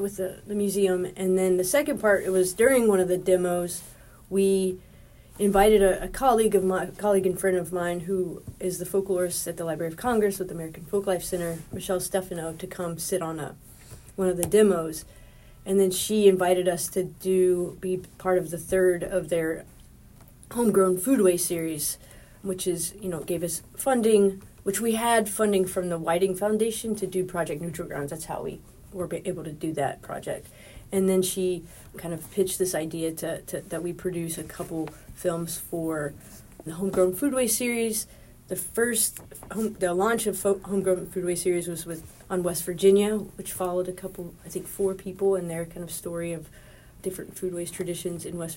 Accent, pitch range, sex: American, 170-195 Hz, female